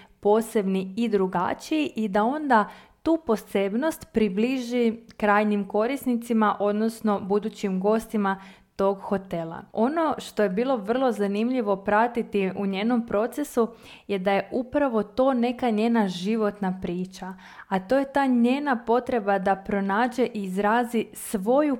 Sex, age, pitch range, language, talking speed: female, 20-39, 200-240 Hz, Croatian, 125 wpm